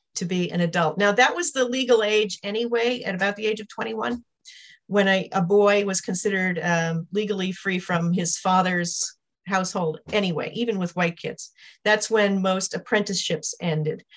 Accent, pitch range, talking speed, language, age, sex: American, 180-225 Hz, 170 wpm, English, 40-59, female